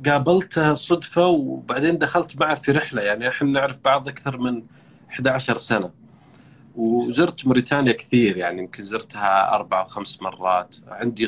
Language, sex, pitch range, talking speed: Arabic, male, 115-165 Hz, 140 wpm